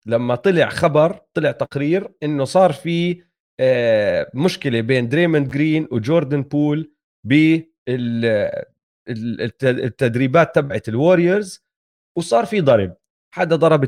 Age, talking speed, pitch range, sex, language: 30-49, 100 wpm, 120-165 Hz, male, Arabic